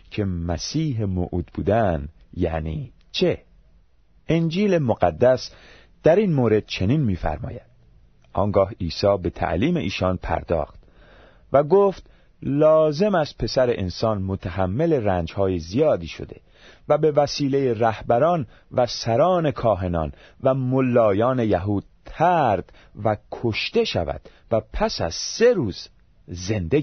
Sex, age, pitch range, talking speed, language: male, 40-59, 90-130 Hz, 110 wpm, Persian